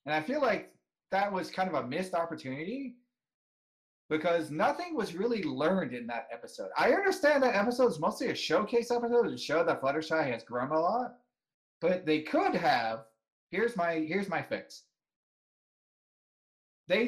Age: 30-49